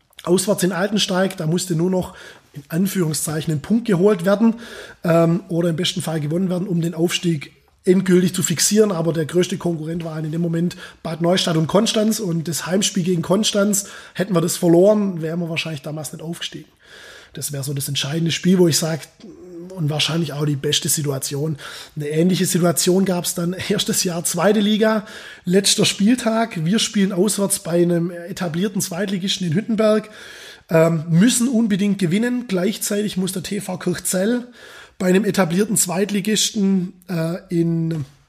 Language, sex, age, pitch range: German, male, 20-39, 170-205 Hz